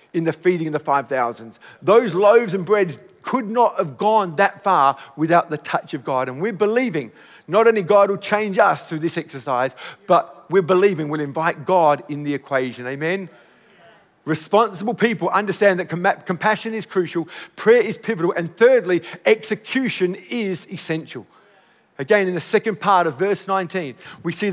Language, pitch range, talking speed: English, 165-215 Hz, 165 wpm